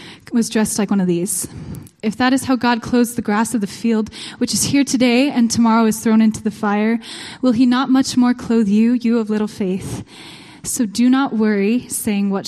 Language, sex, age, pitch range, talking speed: English, female, 10-29, 195-235 Hz, 215 wpm